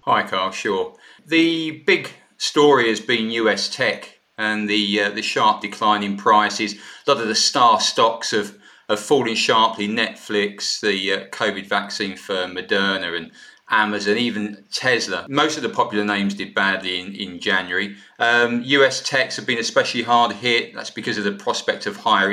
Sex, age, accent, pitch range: male, 40-59, British, 100-110 Hz